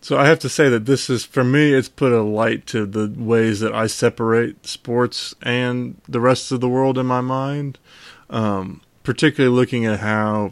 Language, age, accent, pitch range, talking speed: English, 20-39, American, 105-120 Hz, 200 wpm